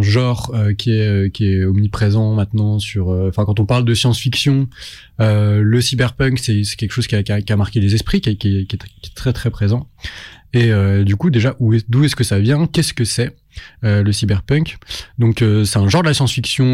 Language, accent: French, French